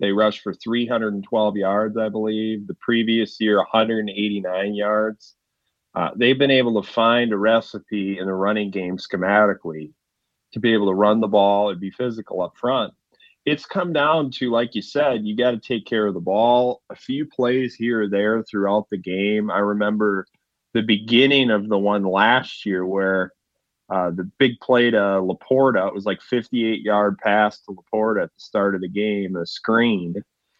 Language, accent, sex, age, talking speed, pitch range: English, American, male, 30-49, 180 wpm, 100-120 Hz